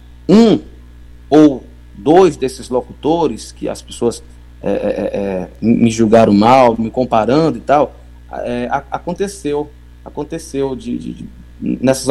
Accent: Brazilian